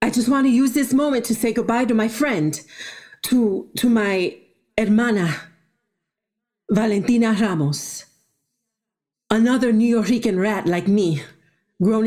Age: 50-69